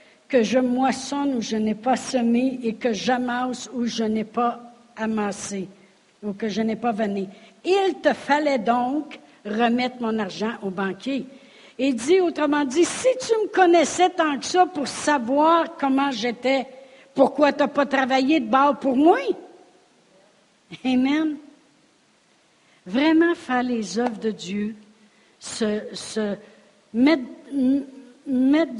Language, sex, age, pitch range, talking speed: French, female, 60-79, 205-275 Hz, 140 wpm